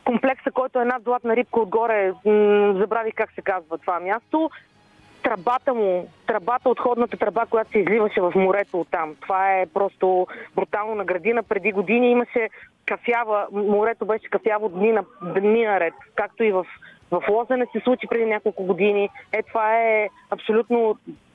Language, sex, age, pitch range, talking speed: Bulgarian, female, 20-39, 205-250 Hz, 155 wpm